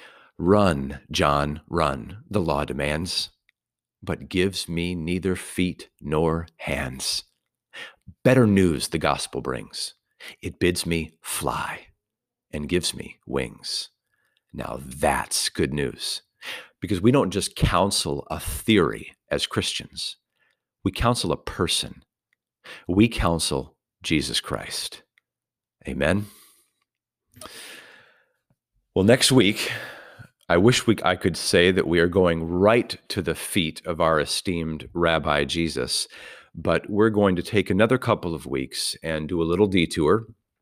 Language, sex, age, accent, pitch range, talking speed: English, male, 50-69, American, 80-100 Hz, 125 wpm